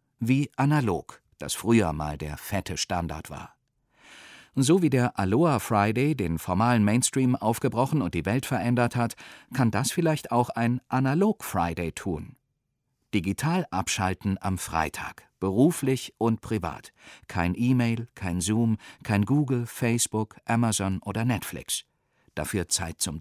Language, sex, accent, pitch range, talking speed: German, male, German, 90-130 Hz, 125 wpm